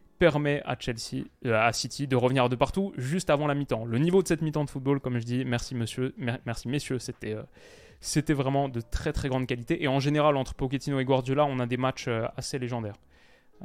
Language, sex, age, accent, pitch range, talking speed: French, male, 20-39, French, 125-150 Hz, 210 wpm